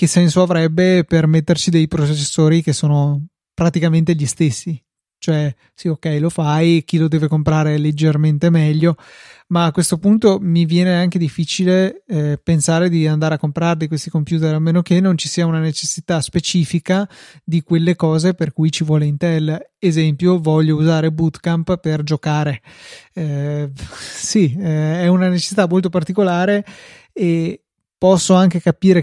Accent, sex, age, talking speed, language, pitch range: native, male, 20-39, 155 wpm, Italian, 155-170 Hz